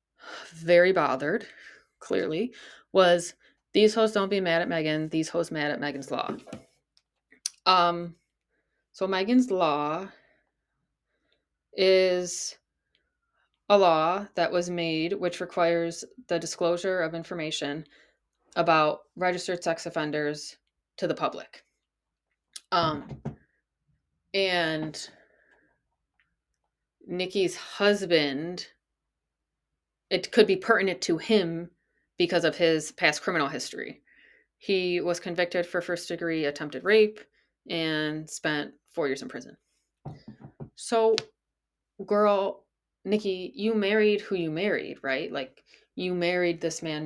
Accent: American